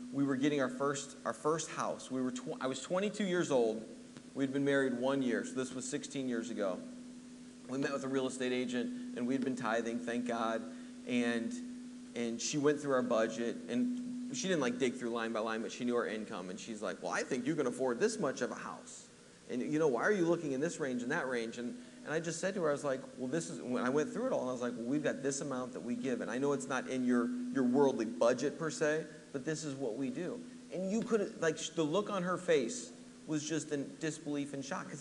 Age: 30-49